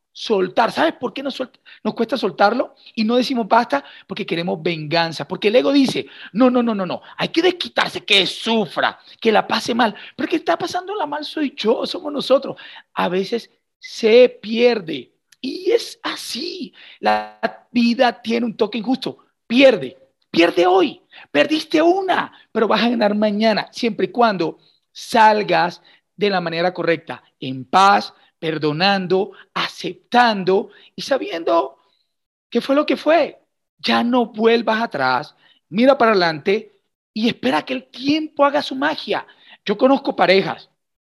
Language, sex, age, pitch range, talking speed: Spanish, male, 40-59, 185-255 Hz, 150 wpm